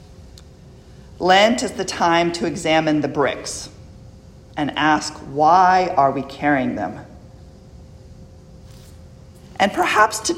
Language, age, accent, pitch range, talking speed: English, 40-59, American, 140-185 Hz, 105 wpm